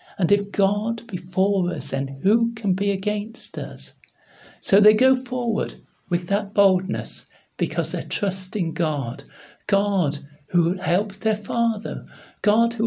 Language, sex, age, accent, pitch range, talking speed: English, male, 60-79, British, 160-205 Hz, 140 wpm